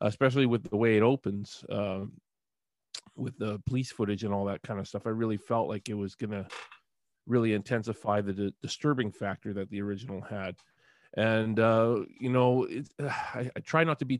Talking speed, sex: 200 wpm, male